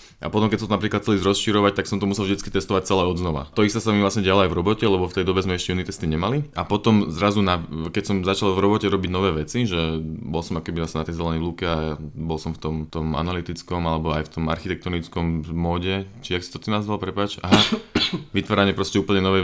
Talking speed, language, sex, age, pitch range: 245 wpm, Slovak, male, 20-39, 85-105 Hz